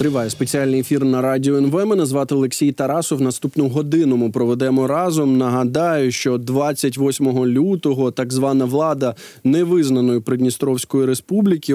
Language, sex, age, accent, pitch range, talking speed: Ukrainian, male, 20-39, native, 130-155 Hz, 125 wpm